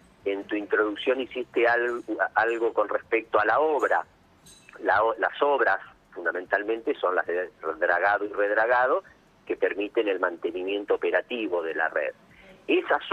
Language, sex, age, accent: Spanish, male, 40-59, Argentinian